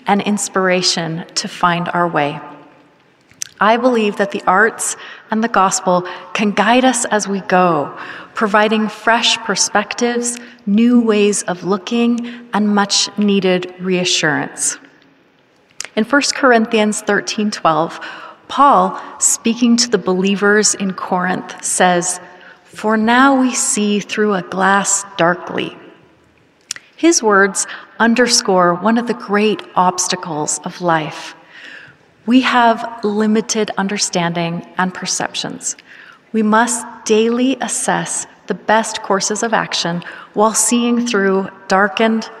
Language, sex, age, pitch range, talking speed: English, female, 30-49, 180-225 Hz, 110 wpm